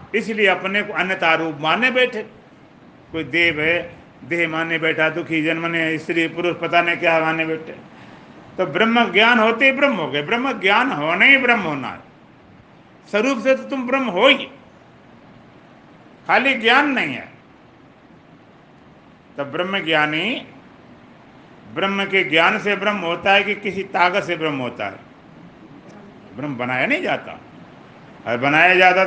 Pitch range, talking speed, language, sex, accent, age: 160-210 Hz, 145 wpm, Hindi, male, native, 50-69